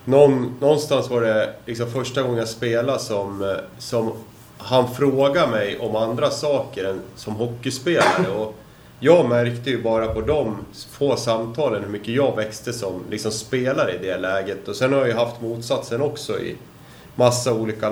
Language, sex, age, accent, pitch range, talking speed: Swedish, male, 30-49, native, 105-130 Hz, 160 wpm